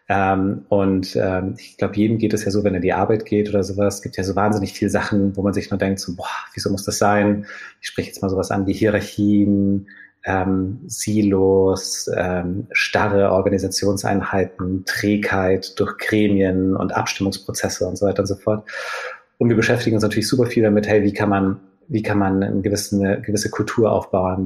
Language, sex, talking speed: German, male, 200 wpm